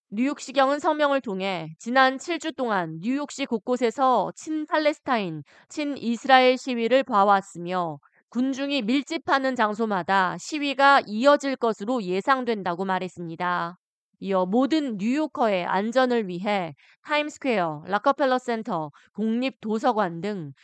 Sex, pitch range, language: female, 190-265 Hz, Korean